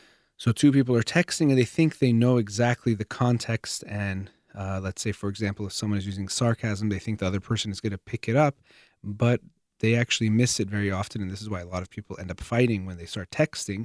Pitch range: 100-125 Hz